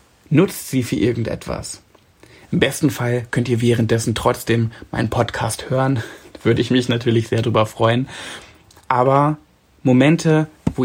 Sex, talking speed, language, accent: male, 135 wpm, German, German